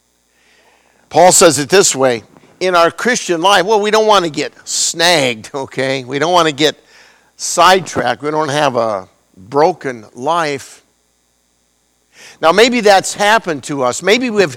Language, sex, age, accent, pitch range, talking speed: English, male, 60-79, American, 130-185 Hz, 150 wpm